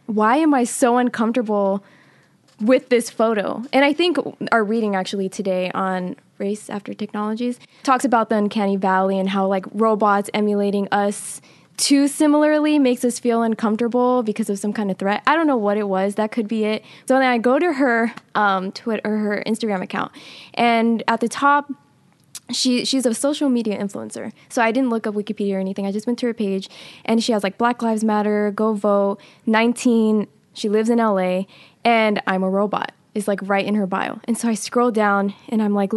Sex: female